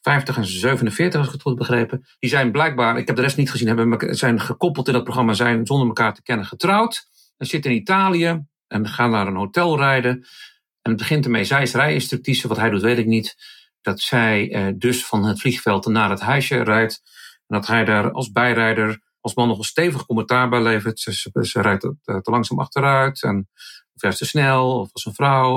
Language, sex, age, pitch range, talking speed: Dutch, male, 50-69, 110-140 Hz, 225 wpm